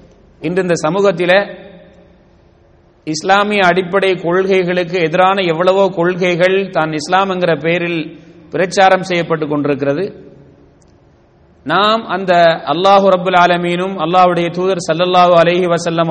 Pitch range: 150-190 Hz